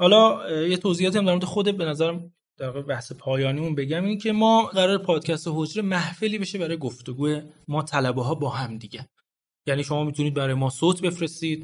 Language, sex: Persian, male